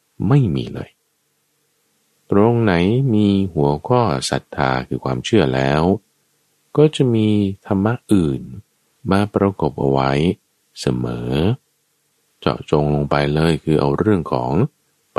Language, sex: Thai, male